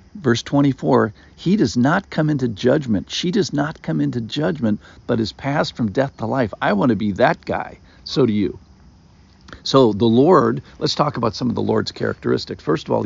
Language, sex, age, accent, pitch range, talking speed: English, male, 50-69, American, 85-130 Hz, 200 wpm